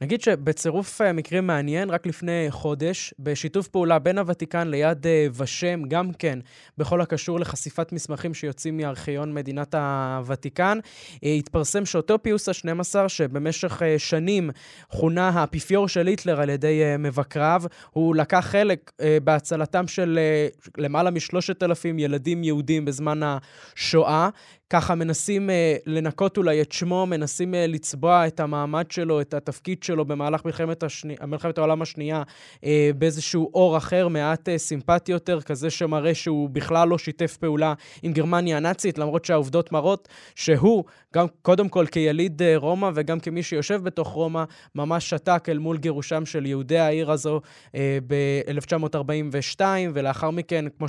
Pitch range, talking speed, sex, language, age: 150-175 Hz, 145 wpm, male, Hebrew, 20-39